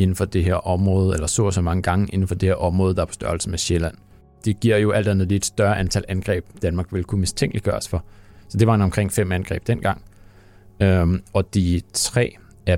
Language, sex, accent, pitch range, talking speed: Danish, male, native, 90-105 Hz, 220 wpm